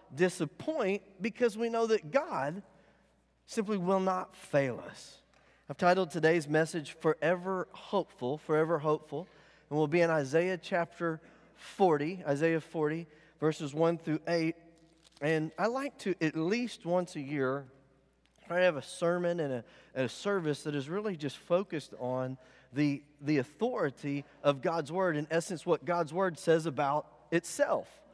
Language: English